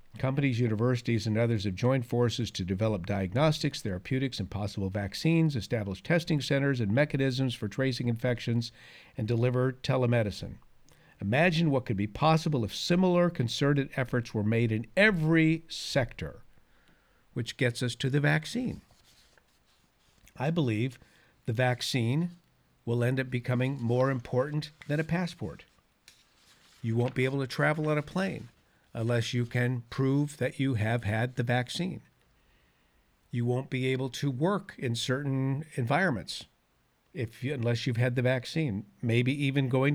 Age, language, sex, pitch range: 50-69, English, male, 115-145 Hz